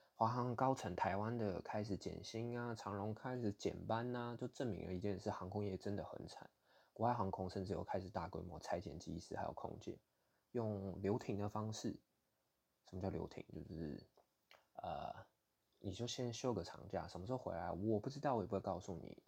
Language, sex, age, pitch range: Chinese, male, 20-39, 90-120 Hz